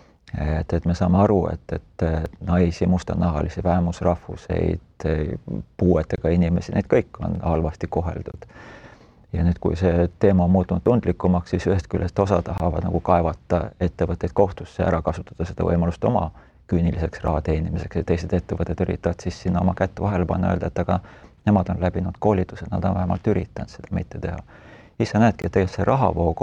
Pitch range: 85-95 Hz